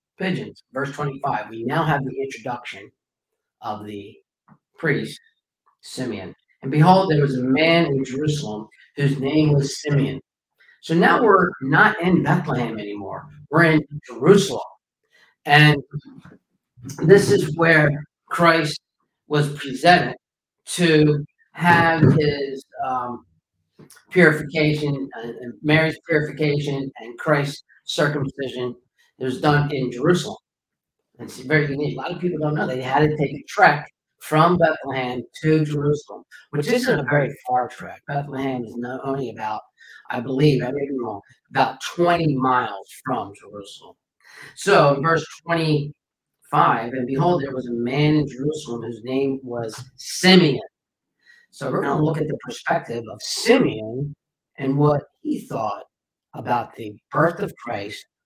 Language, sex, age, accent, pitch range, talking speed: English, male, 50-69, American, 130-155 Hz, 135 wpm